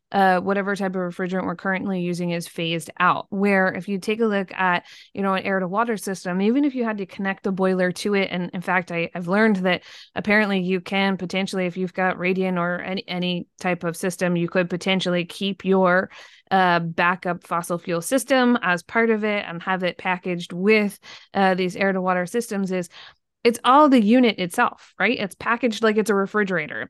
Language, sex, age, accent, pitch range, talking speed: English, female, 20-39, American, 180-210 Hz, 210 wpm